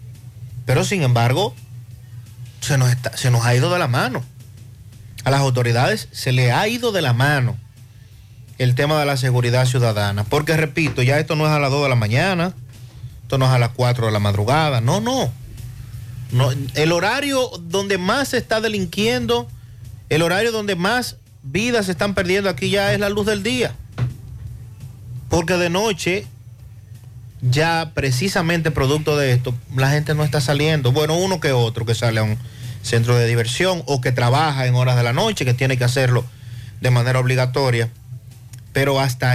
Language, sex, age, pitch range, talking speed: Spanish, male, 40-59, 120-145 Hz, 175 wpm